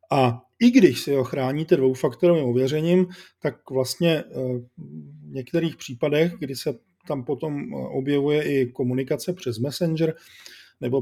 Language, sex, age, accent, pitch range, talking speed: Czech, male, 40-59, native, 120-140 Hz, 125 wpm